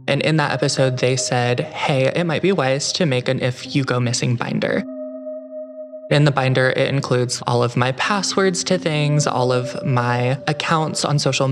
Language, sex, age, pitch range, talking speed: English, male, 20-39, 130-175 Hz, 190 wpm